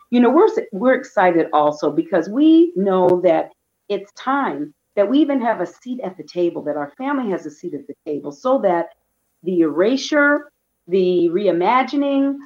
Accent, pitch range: American, 155-255 Hz